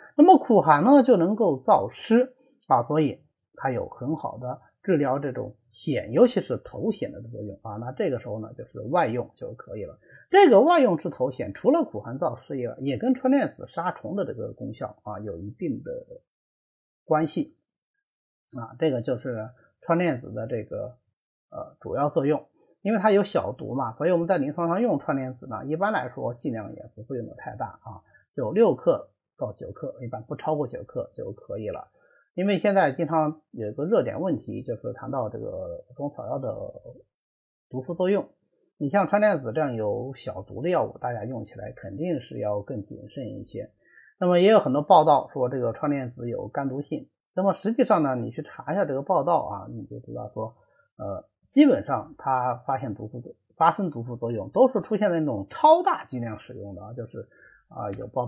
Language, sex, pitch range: Chinese, male, 120-200 Hz